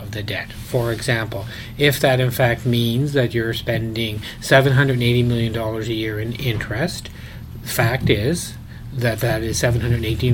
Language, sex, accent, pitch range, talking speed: English, male, American, 115-135 Hz, 145 wpm